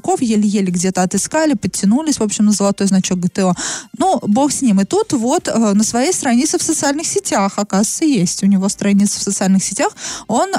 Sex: female